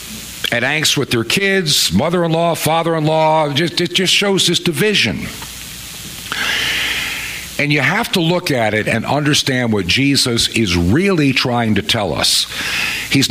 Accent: American